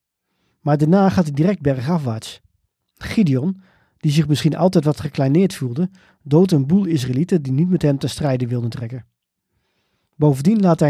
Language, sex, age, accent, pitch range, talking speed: Dutch, male, 40-59, Dutch, 130-175 Hz, 160 wpm